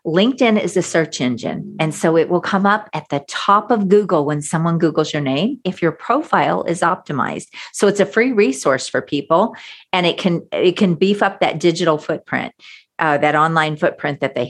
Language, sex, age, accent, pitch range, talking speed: English, female, 50-69, American, 160-200 Hz, 205 wpm